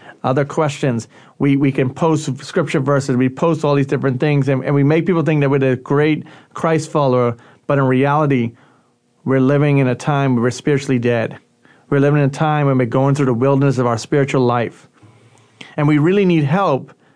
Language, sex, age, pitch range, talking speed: English, male, 40-59, 135-160 Hz, 205 wpm